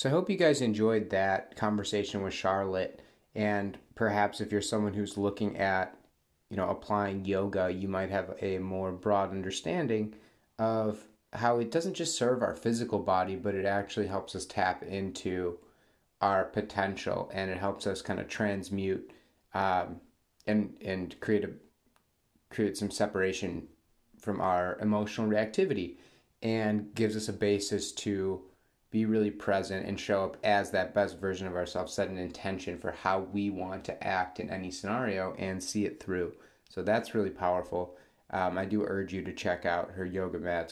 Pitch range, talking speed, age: 95-105 Hz, 170 wpm, 30-49